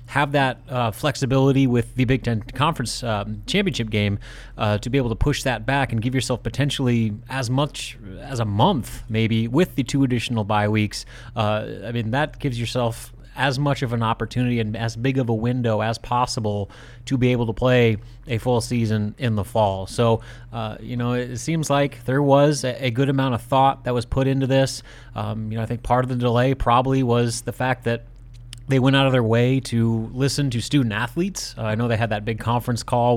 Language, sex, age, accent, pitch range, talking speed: English, male, 30-49, American, 115-130 Hz, 215 wpm